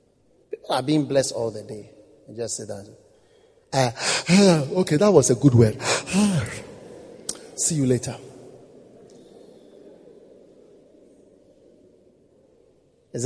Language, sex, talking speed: English, male, 90 wpm